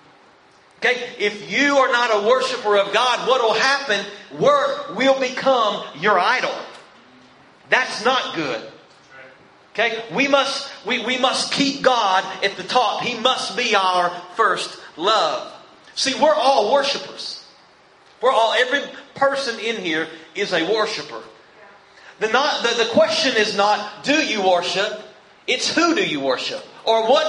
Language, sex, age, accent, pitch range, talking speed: English, male, 40-59, American, 200-270 Hz, 145 wpm